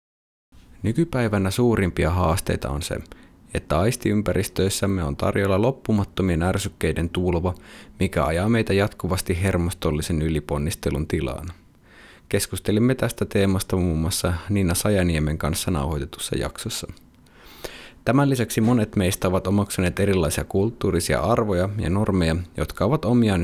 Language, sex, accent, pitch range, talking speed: Finnish, male, native, 85-105 Hz, 110 wpm